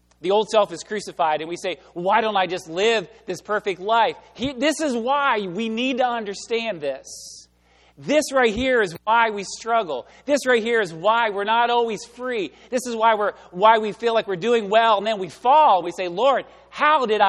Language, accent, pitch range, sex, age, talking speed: English, American, 180-260 Hz, male, 40-59, 215 wpm